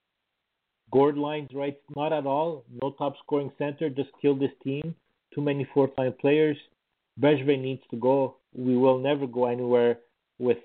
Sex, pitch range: male, 120-145 Hz